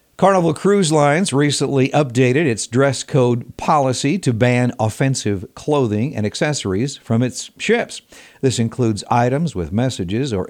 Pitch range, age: 110-145 Hz, 60-79